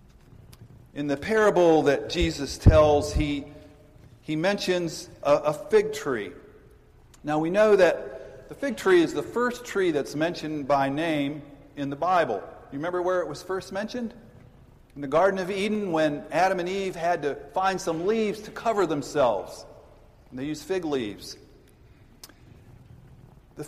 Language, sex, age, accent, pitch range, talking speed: English, male, 50-69, American, 145-185 Hz, 155 wpm